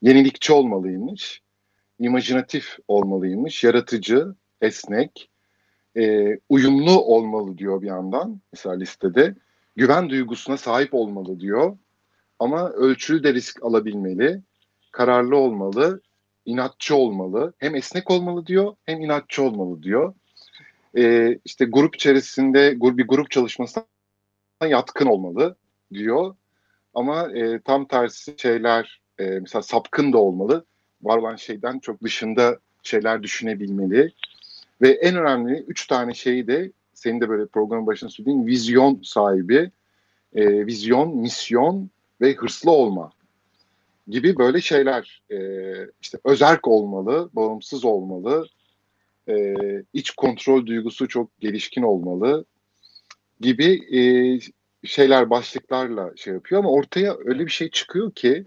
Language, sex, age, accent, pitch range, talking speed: Turkish, male, 50-69, native, 100-135 Hz, 115 wpm